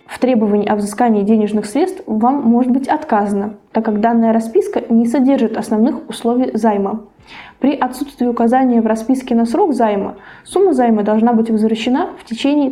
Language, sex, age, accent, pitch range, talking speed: Russian, female, 20-39, native, 220-265 Hz, 160 wpm